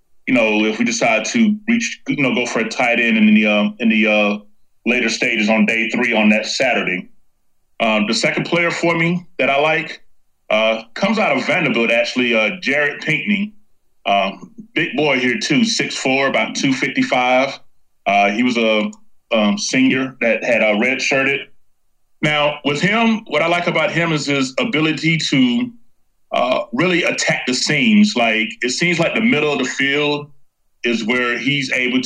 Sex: male